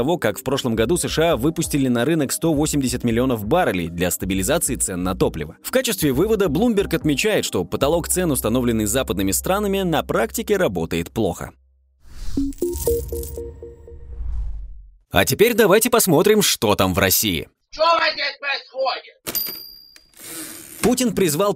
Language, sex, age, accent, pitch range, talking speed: Russian, male, 20-39, native, 115-180 Hz, 115 wpm